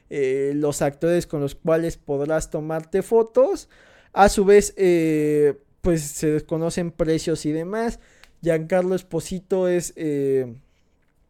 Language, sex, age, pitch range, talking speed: Spanish, male, 20-39, 145-180 Hz, 120 wpm